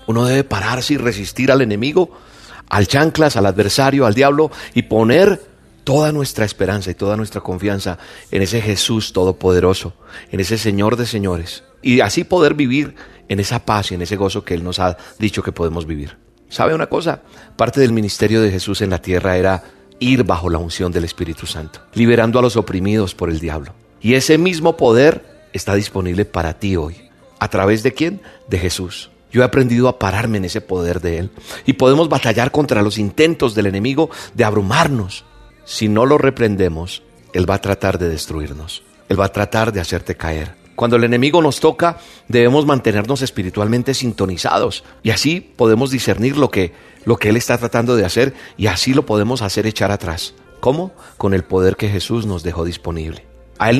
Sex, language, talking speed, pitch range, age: male, Spanish, 185 wpm, 95-125 Hz, 40-59